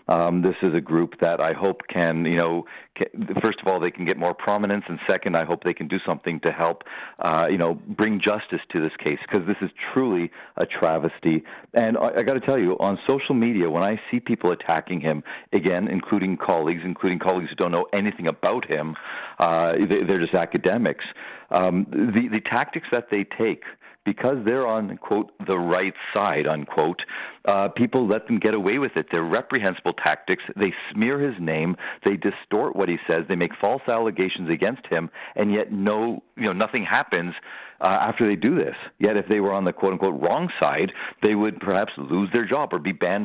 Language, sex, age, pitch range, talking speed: English, male, 40-59, 85-105 Hz, 205 wpm